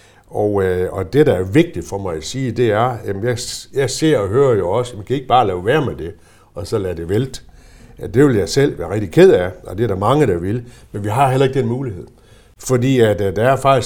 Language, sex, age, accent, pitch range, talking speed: Danish, male, 60-79, native, 95-130 Hz, 265 wpm